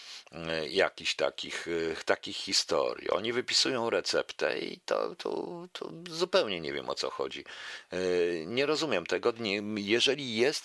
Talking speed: 125 wpm